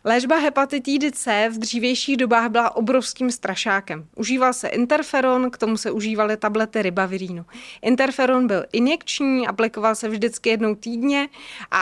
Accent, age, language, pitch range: native, 30-49, Czech, 215-250 Hz